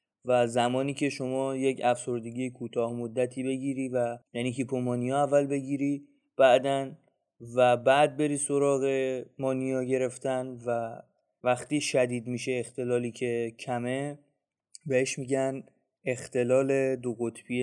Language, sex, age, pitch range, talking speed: Persian, male, 30-49, 125-140 Hz, 110 wpm